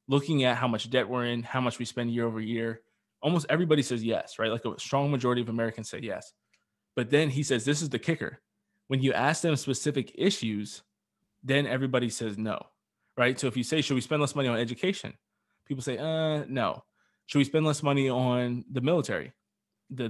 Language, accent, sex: English, American, male